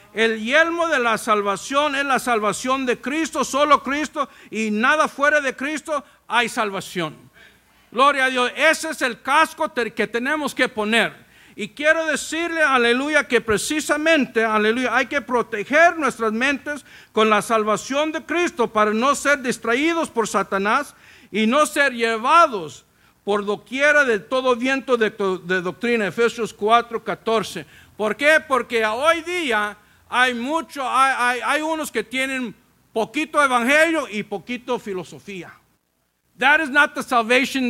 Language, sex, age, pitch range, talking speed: English, male, 50-69, 210-285 Hz, 140 wpm